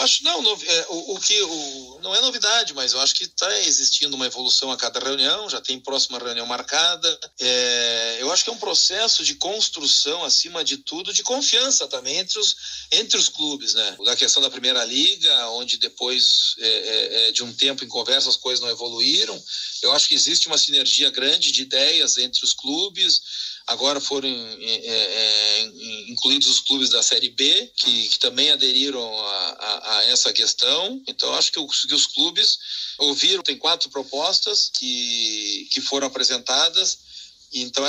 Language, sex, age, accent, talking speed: Portuguese, male, 40-59, Brazilian, 180 wpm